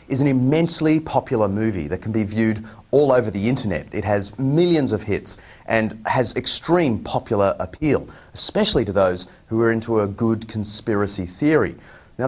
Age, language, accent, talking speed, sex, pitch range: 30-49, English, Australian, 165 wpm, male, 100-135 Hz